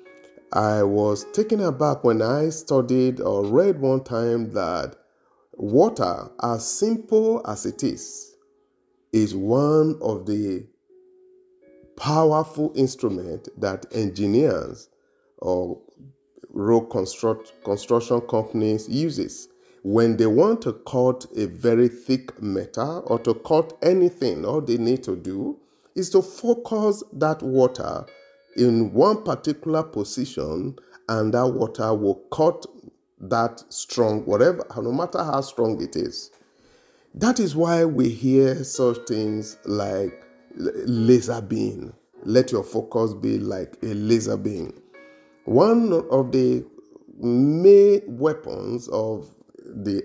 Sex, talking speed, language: male, 115 wpm, English